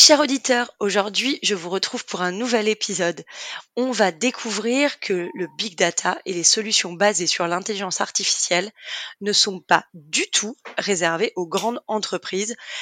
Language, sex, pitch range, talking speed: French, female, 190-245 Hz, 155 wpm